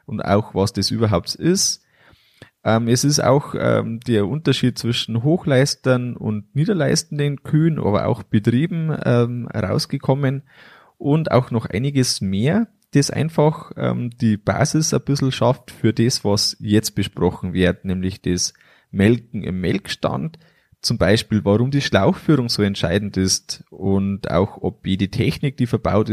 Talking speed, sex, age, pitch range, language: 140 wpm, male, 20-39, 100-140 Hz, German